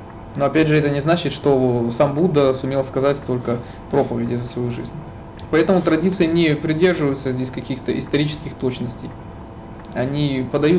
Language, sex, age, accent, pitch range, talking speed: Russian, male, 20-39, native, 120-155 Hz, 145 wpm